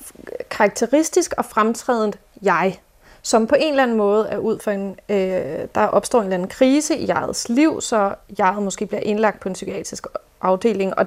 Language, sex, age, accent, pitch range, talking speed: Danish, female, 30-49, native, 195-230 Hz, 185 wpm